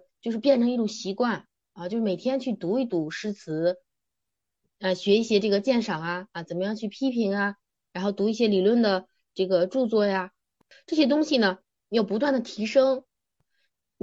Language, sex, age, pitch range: Chinese, female, 20-39, 180-240 Hz